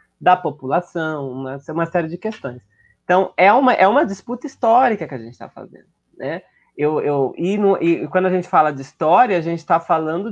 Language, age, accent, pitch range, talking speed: Portuguese, 20-39, Brazilian, 135-185 Hz, 210 wpm